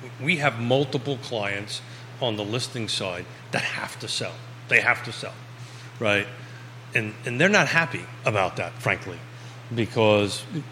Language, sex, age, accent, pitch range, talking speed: English, male, 40-59, American, 105-125 Hz, 145 wpm